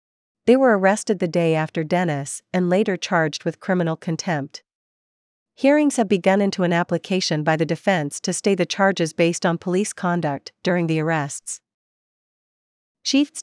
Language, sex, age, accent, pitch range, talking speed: English, female, 50-69, American, 160-195 Hz, 150 wpm